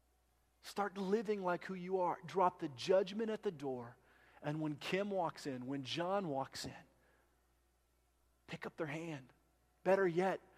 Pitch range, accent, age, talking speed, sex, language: 105-175 Hz, American, 40-59, 155 wpm, male, English